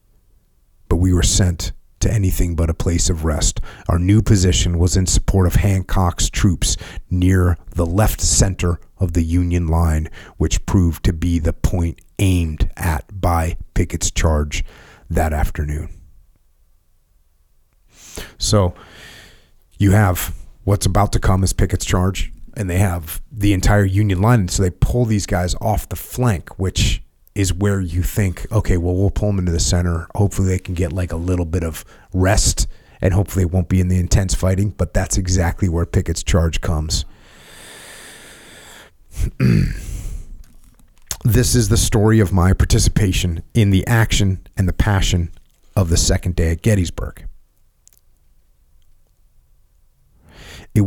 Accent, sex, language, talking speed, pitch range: American, male, English, 145 wpm, 85-100 Hz